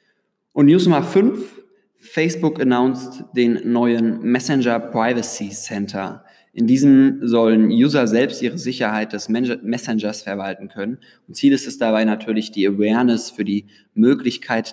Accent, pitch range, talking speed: German, 110-130 Hz, 135 wpm